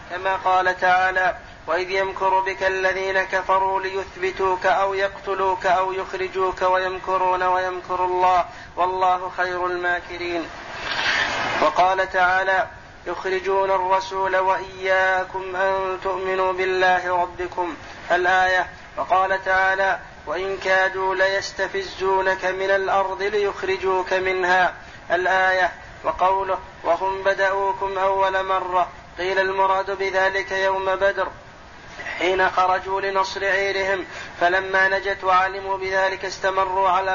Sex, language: male, Arabic